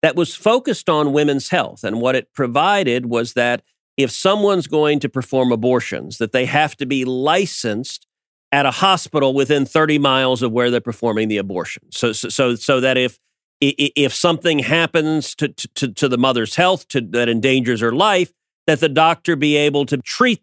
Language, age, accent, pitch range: English, 40-59, American, 120-160 Hz